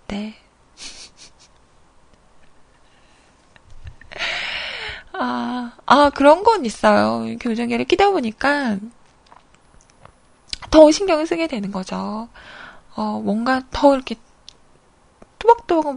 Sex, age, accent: female, 20-39, native